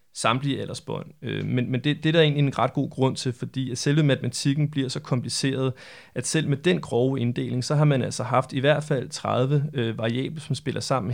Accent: native